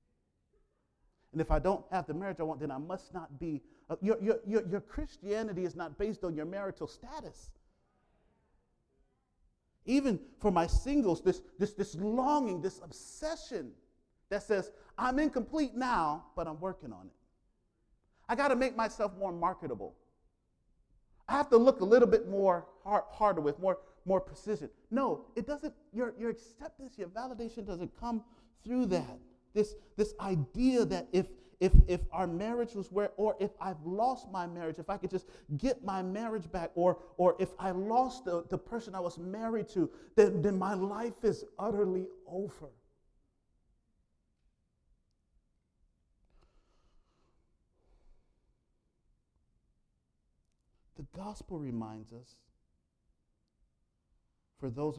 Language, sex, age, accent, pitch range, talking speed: English, male, 40-59, American, 160-225 Hz, 140 wpm